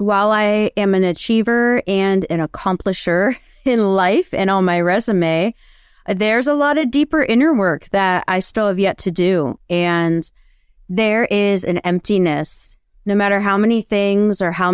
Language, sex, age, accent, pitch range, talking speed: English, female, 30-49, American, 170-210 Hz, 165 wpm